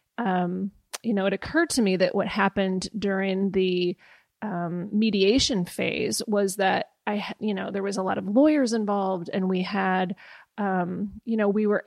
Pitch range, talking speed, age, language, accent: 185-210 Hz, 175 wpm, 30-49, English, American